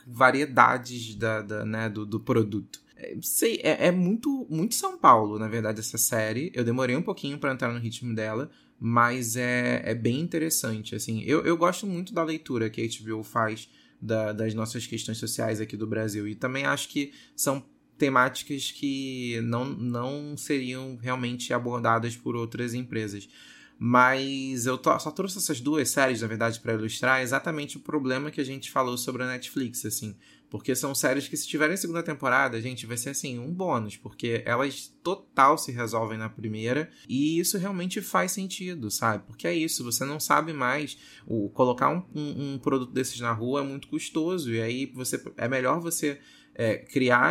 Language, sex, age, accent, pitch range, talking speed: Portuguese, male, 20-39, Brazilian, 115-145 Hz, 180 wpm